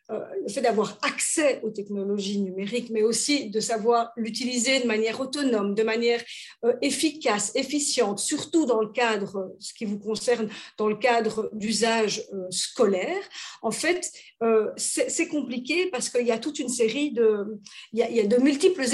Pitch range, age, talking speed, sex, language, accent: 215-270 Hz, 50-69, 155 wpm, female, French, French